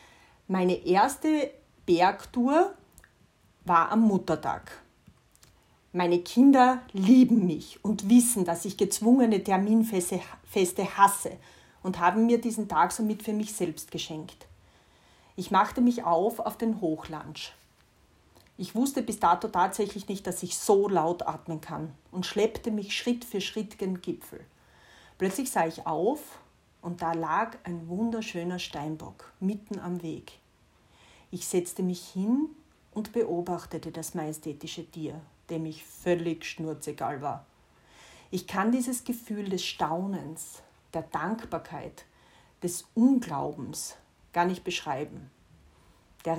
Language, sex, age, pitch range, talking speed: German, female, 40-59, 165-220 Hz, 125 wpm